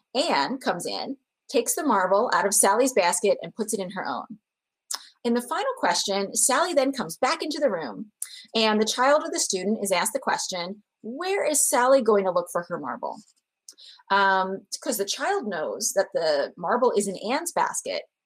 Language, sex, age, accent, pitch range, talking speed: English, female, 30-49, American, 195-285 Hz, 190 wpm